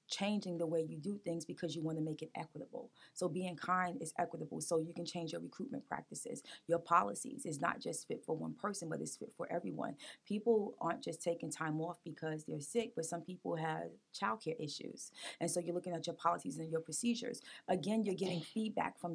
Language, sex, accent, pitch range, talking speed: English, female, American, 170-200 Hz, 215 wpm